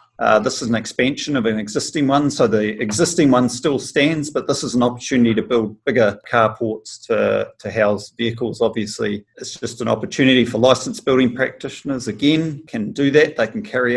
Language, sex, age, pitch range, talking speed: English, male, 40-59, 105-125 Hz, 190 wpm